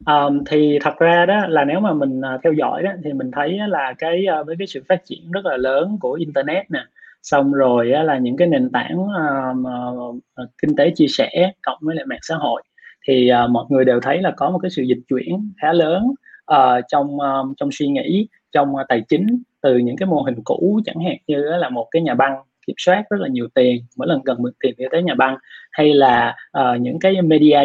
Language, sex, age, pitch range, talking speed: Vietnamese, male, 20-39, 135-185 Hz, 245 wpm